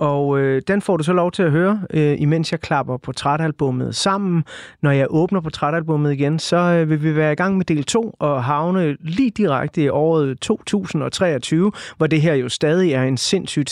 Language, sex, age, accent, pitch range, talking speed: Danish, male, 30-49, native, 145-180 Hz, 205 wpm